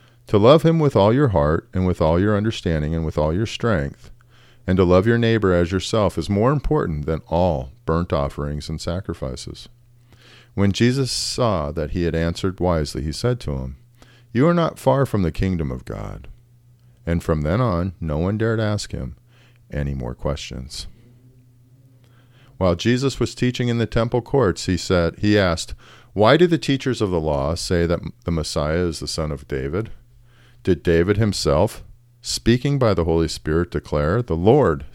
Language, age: English, 40-59